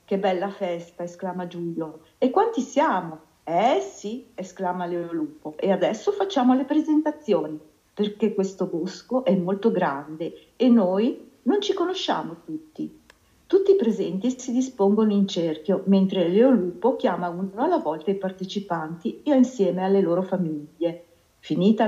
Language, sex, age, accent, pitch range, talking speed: Italian, female, 50-69, native, 175-225 Hz, 135 wpm